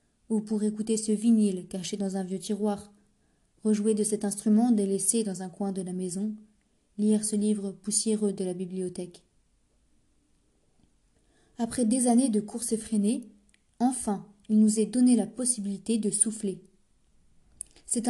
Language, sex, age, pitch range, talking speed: French, female, 20-39, 200-225 Hz, 145 wpm